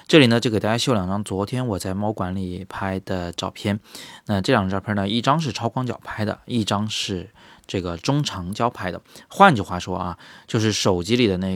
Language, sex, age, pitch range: Chinese, male, 20-39, 95-115 Hz